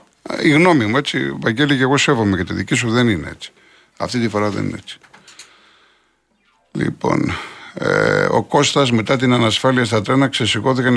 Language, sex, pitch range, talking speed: Greek, male, 95-125 Hz, 165 wpm